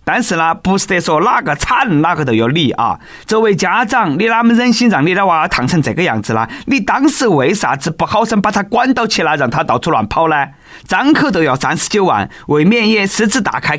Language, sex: Chinese, male